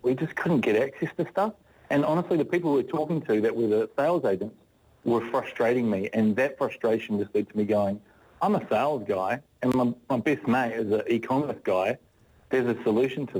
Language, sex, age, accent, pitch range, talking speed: English, male, 40-59, Australian, 105-120 Hz, 215 wpm